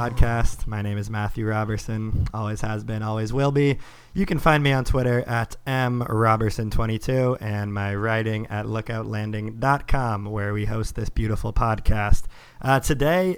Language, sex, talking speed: English, male, 155 wpm